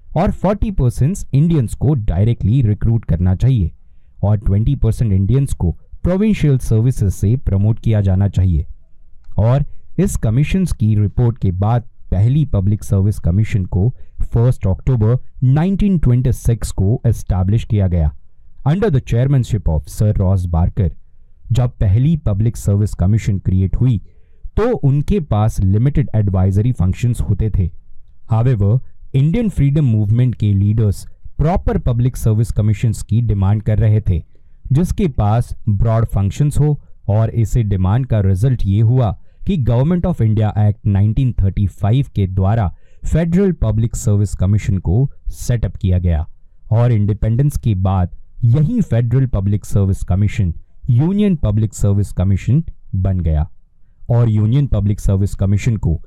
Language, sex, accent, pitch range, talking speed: Hindi, male, native, 95-125 Hz, 85 wpm